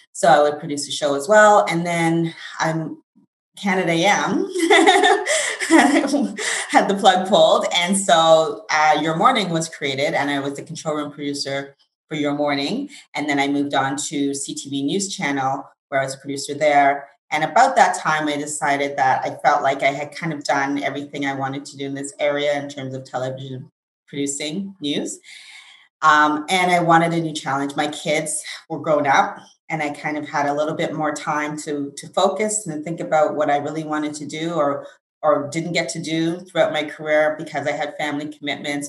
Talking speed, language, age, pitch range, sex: 195 wpm, English, 30-49, 145-165 Hz, female